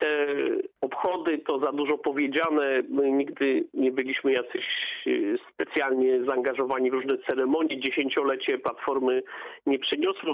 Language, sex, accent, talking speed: Polish, male, native, 115 wpm